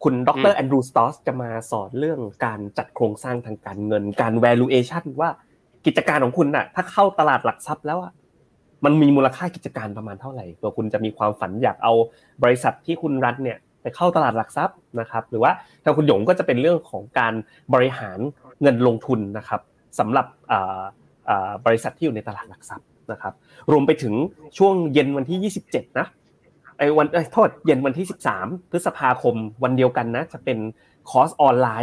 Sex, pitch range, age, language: male, 110-150 Hz, 20-39, Thai